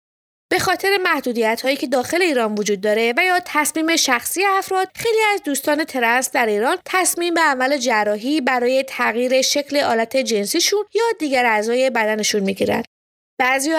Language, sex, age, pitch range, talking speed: English, female, 20-39, 235-330 Hz, 150 wpm